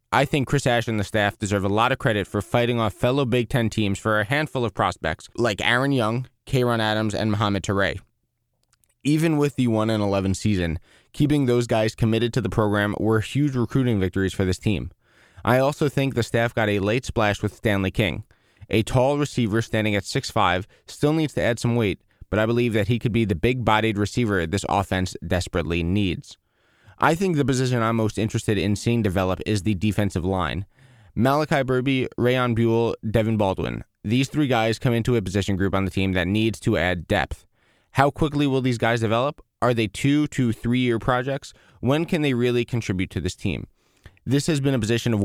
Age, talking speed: 20-39, 205 wpm